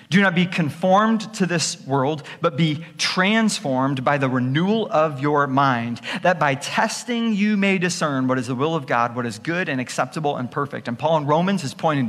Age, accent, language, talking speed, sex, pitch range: 40-59, American, English, 205 wpm, male, 135-180 Hz